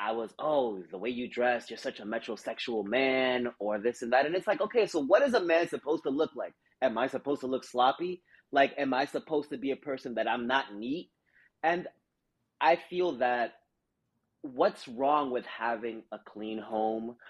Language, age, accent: English, 30-49, American